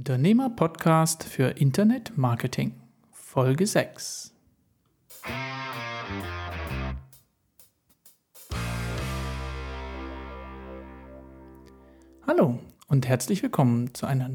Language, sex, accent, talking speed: German, male, German, 45 wpm